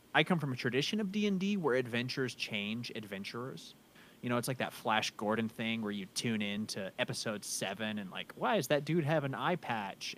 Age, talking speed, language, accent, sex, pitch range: 30-49, 210 wpm, English, American, male, 105-150 Hz